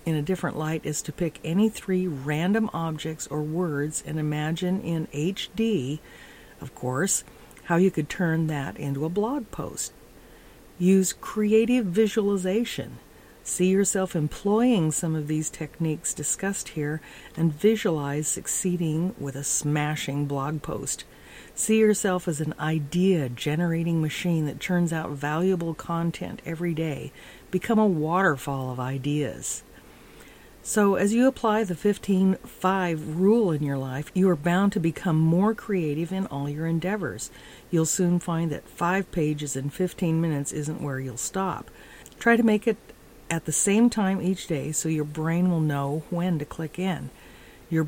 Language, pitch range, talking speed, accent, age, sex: English, 150-190 Hz, 150 wpm, American, 50-69, female